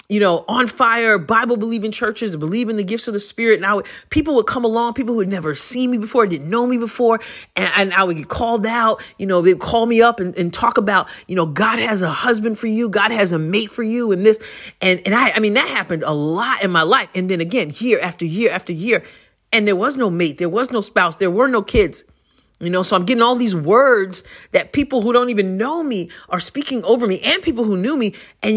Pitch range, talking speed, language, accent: 185-235 Hz, 260 wpm, English, American